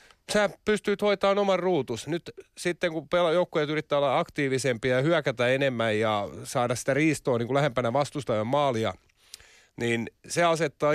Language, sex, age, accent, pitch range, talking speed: Finnish, male, 30-49, native, 120-155 Hz, 140 wpm